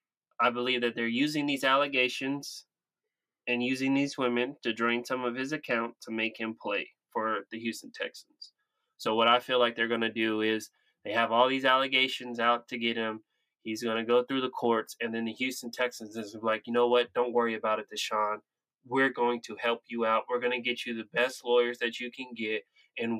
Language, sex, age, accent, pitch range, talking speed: English, male, 20-39, American, 115-135 Hz, 220 wpm